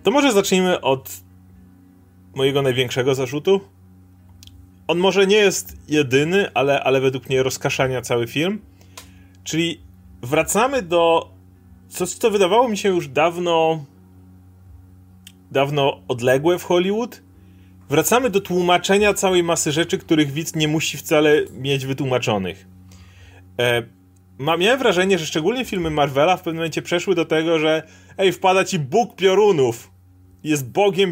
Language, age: Polish, 30-49